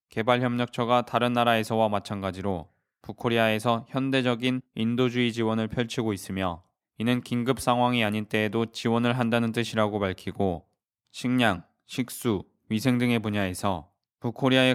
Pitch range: 110-125 Hz